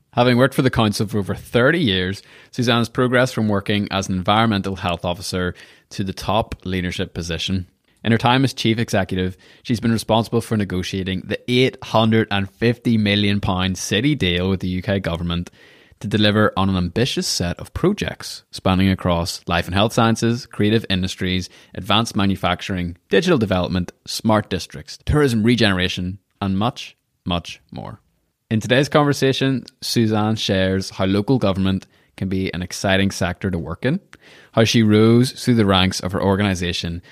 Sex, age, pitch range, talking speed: male, 20-39, 90-115 Hz, 155 wpm